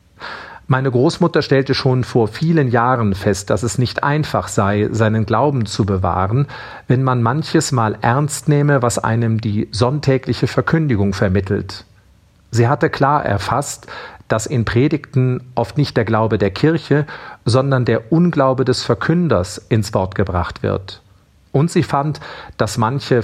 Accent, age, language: German, 40-59, German